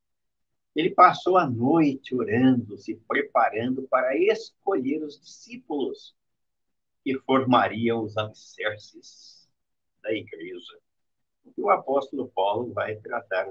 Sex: male